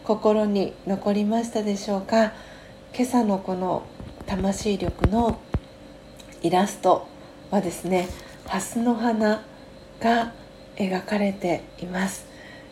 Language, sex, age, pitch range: Japanese, female, 40-59, 185-225 Hz